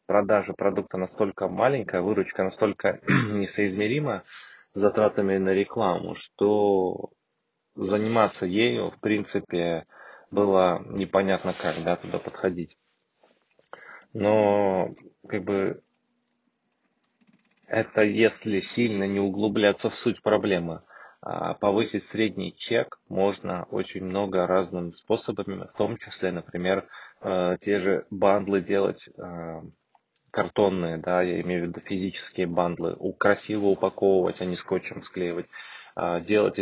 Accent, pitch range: native, 90-105 Hz